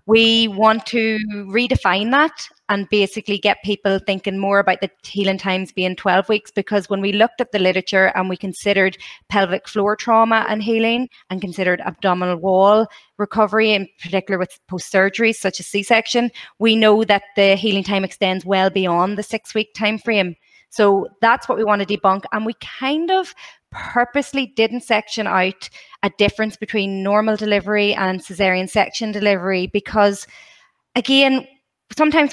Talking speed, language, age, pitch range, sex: 160 wpm, English, 30-49, 195-225 Hz, female